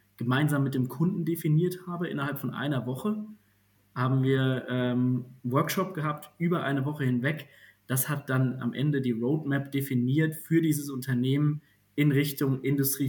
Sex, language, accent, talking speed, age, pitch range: male, German, German, 150 wpm, 20-39, 125-155 Hz